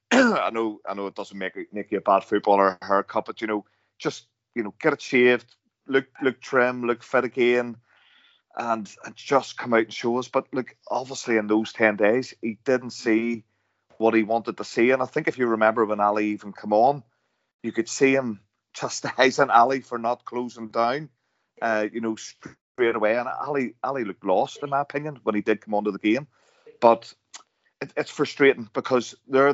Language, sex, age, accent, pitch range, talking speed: English, male, 30-49, British, 110-125 Hz, 195 wpm